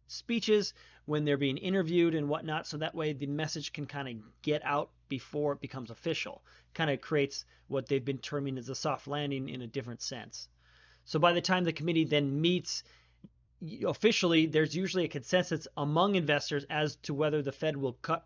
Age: 30-49